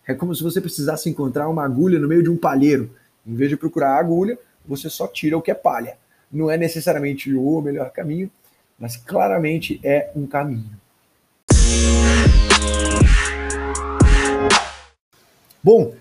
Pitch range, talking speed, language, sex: 130-170 Hz, 140 wpm, Portuguese, male